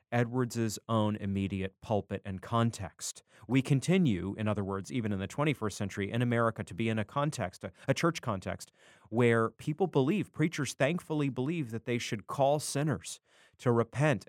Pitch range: 110-150 Hz